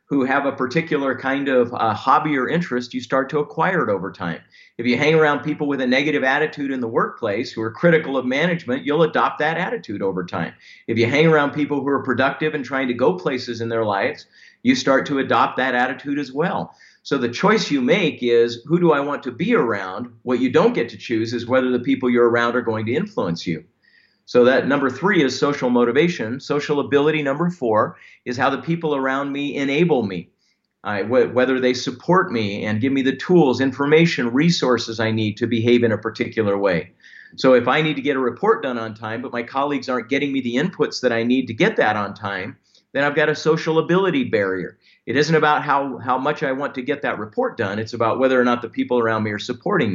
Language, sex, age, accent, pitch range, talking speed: English, male, 50-69, American, 120-150 Hz, 230 wpm